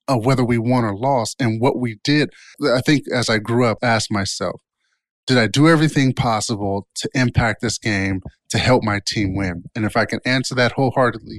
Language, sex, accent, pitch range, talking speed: English, male, American, 115-145 Hz, 210 wpm